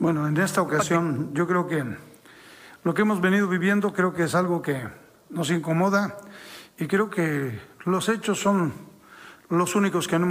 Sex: male